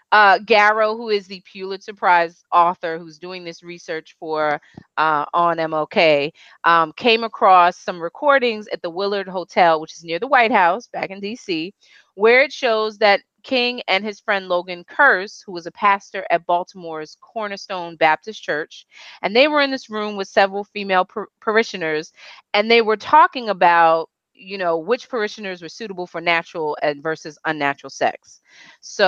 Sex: female